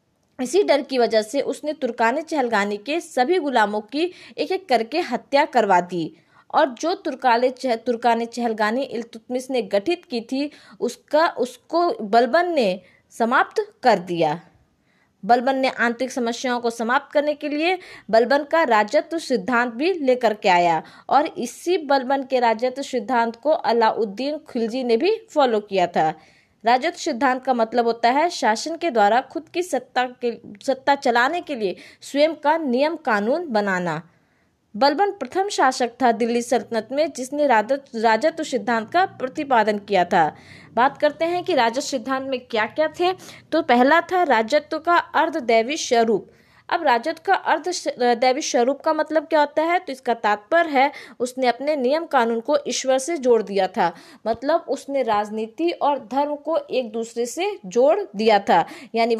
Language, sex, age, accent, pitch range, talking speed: Hindi, female, 20-39, native, 230-310 Hz, 160 wpm